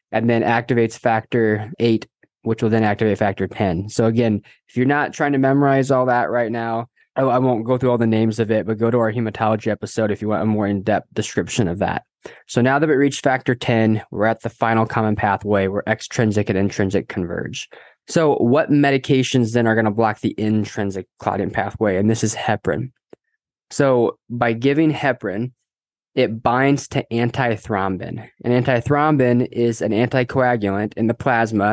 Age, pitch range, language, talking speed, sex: 20-39, 110-125 Hz, English, 185 wpm, male